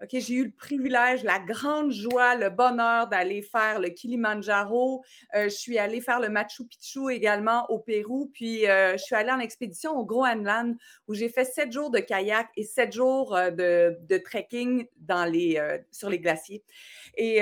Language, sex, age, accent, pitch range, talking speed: French, female, 30-49, Canadian, 205-255 Hz, 185 wpm